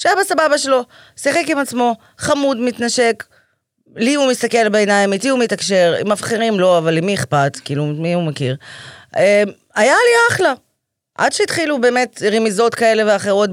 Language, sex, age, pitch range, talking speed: Hebrew, female, 30-49, 175-245 Hz, 145 wpm